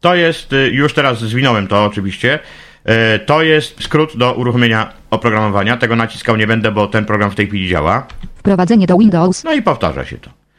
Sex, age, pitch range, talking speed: male, 50-69, 110-155 Hz, 180 wpm